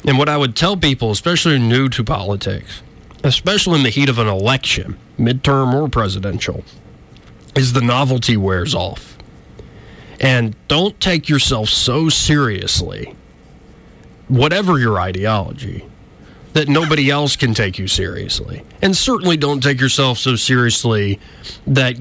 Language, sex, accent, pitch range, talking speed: English, male, American, 110-150 Hz, 135 wpm